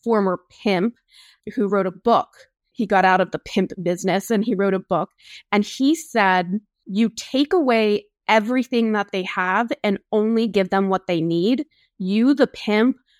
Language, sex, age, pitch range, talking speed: English, female, 20-39, 195-255 Hz, 175 wpm